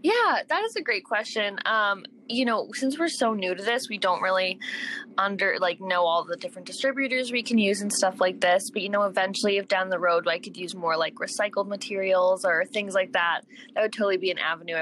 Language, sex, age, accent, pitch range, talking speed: English, female, 20-39, American, 185-255 Hz, 230 wpm